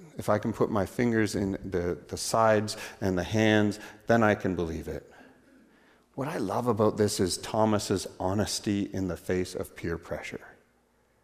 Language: English